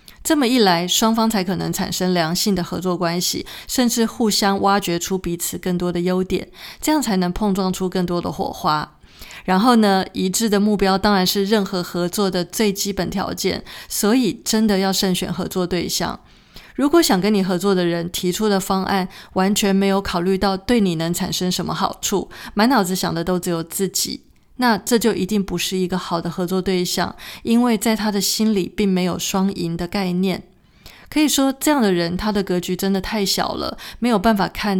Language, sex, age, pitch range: Chinese, female, 20-39, 180-210 Hz